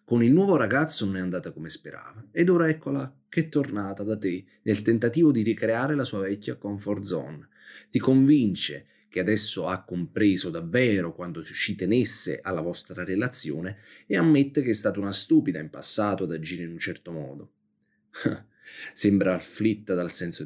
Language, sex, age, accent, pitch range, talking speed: Italian, male, 30-49, native, 90-125 Hz, 170 wpm